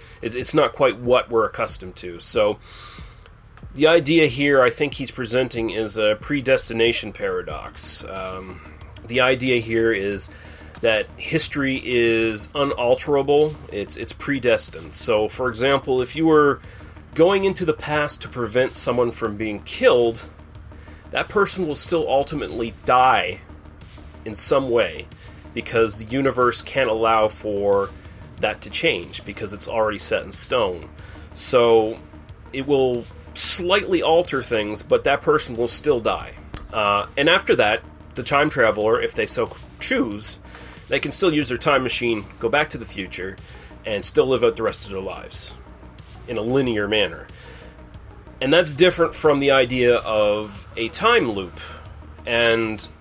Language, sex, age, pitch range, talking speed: English, male, 30-49, 95-135 Hz, 145 wpm